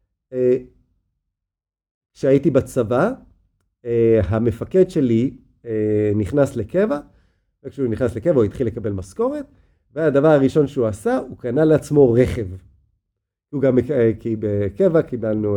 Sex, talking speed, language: male, 115 wpm, Hebrew